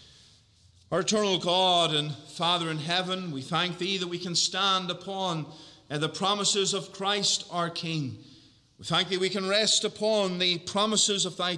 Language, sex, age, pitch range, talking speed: English, male, 30-49, 155-195 Hz, 165 wpm